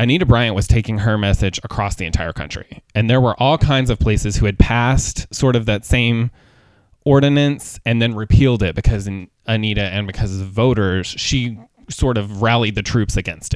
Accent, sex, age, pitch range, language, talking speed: American, male, 20-39, 100-125 Hz, English, 185 wpm